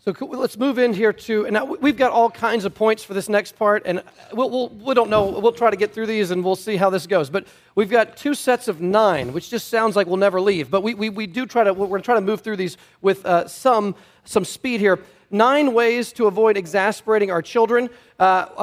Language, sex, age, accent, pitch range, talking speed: English, male, 40-59, American, 195-240 Hz, 250 wpm